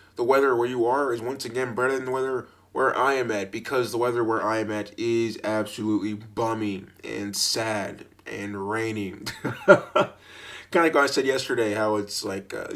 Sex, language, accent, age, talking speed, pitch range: male, English, American, 20-39, 195 wpm, 100-115 Hz